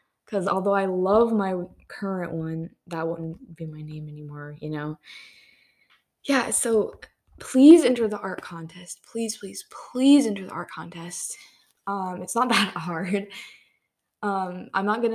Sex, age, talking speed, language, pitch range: female, 10-29, 150 wpm, English, 165-210 Hz